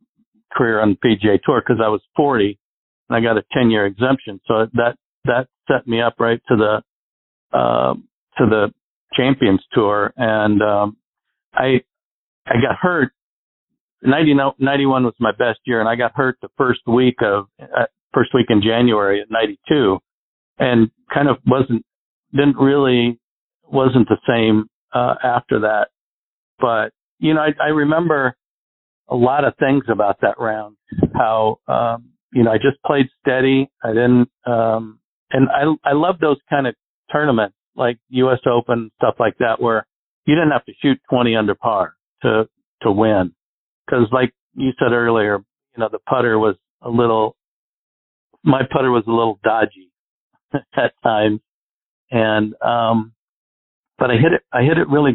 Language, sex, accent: English, male, American